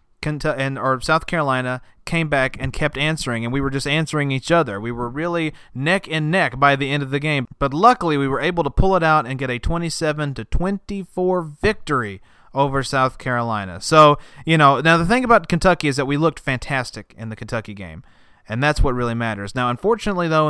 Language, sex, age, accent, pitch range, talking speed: English, male, 30-49, American, 130-170 Hz, 210 wpm